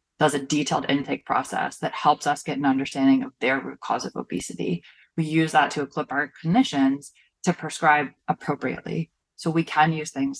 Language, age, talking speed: English, 20-39, 185 wpm